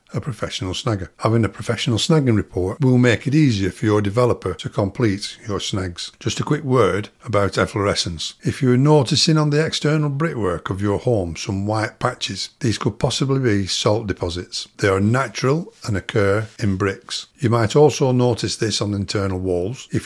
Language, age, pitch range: English, 60-79, 100-130 Hz